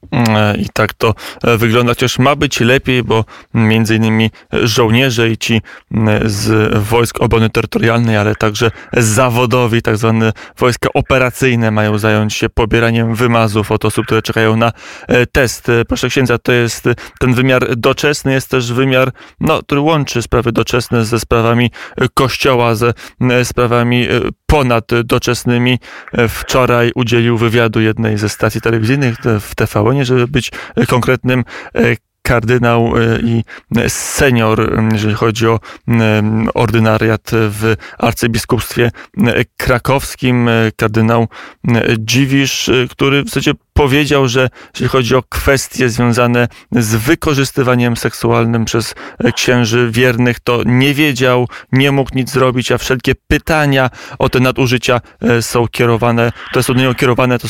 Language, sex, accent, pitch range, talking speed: Polish, male, native, 115-130 Hz, 125 wpm